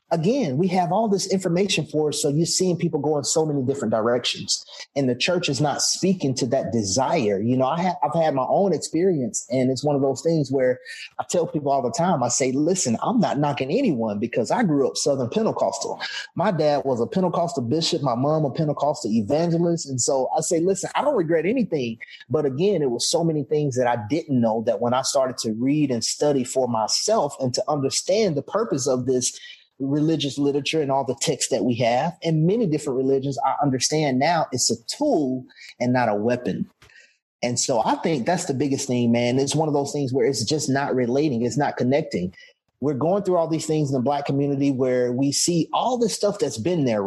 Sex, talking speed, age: male, 220 wpm, 30-49